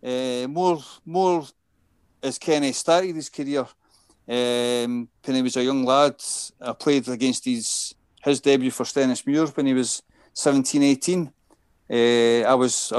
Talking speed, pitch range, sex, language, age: 150 wpm, 115-130 Hz, male, English, 30-49